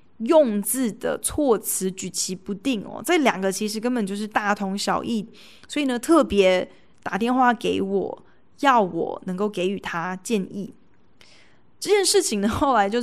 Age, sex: 20-39, female